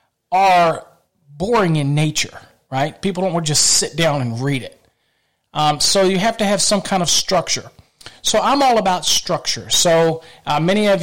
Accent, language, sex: American, English, male